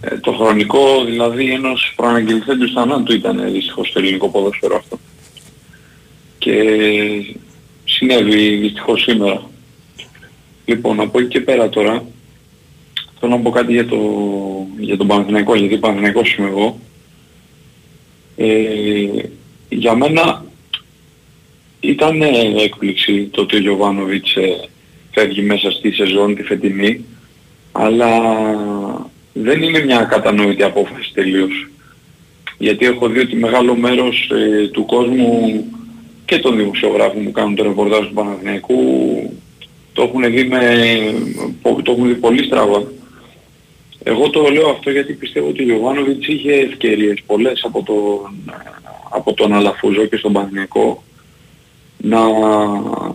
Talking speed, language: 115 wpm, Greek